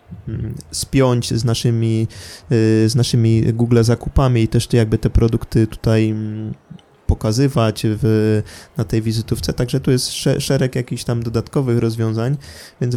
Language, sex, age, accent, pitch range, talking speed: Polish, male, 20-39, native, 110-130 Hz, 130 wpm